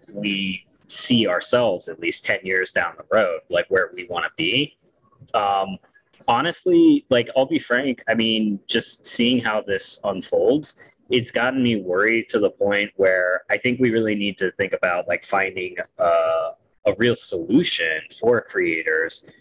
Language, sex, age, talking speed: English, male, 30-49, 160 wpm